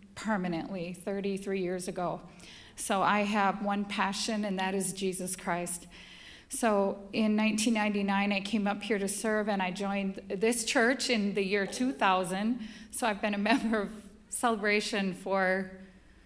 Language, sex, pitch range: English, female, 195-225 Hz